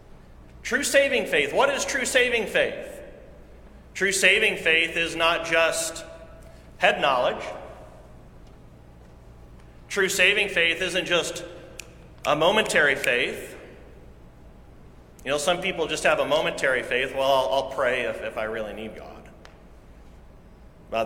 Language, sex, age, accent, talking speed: English, male, 40-59, American, 125 wpm